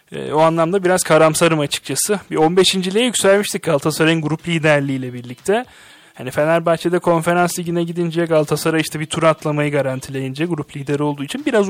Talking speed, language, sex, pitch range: 145 wpm, Turkish, male, 145-175 Hz